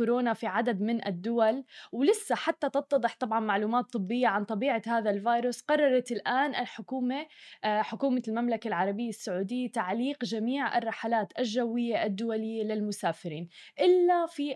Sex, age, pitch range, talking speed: female, 20-39, 220-265 Hz, 120 wpm